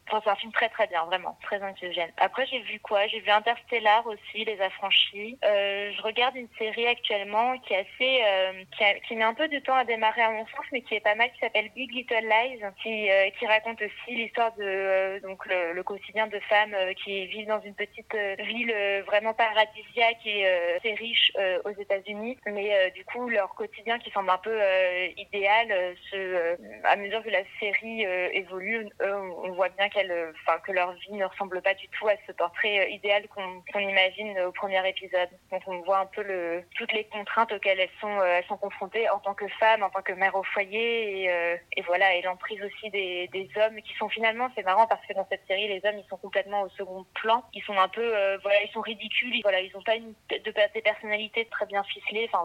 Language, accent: French, French